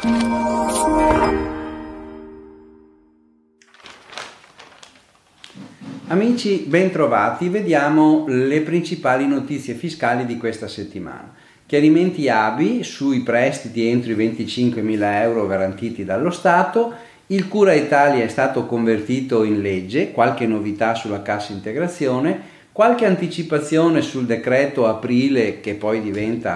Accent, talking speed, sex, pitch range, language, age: native, 95 wpm, male, 110-170 Hz, Italian, 40-59